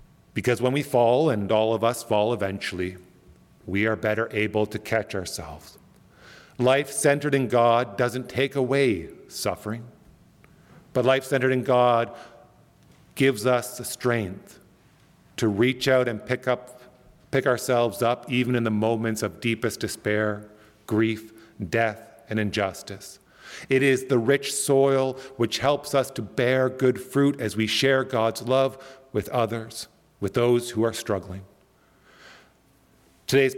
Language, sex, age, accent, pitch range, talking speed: English, male, 40-59, American, 110-135 Hz, 140 wpm